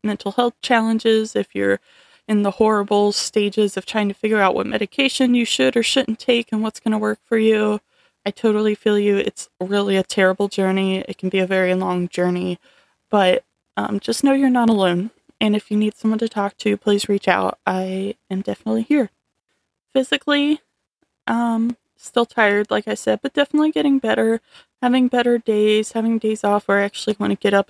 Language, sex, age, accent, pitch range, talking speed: English, female, 20-39, American, 190-220 Hz, 195 wpm